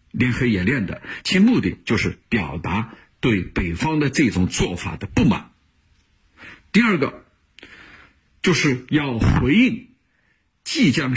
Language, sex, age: Chinese, male, 50-69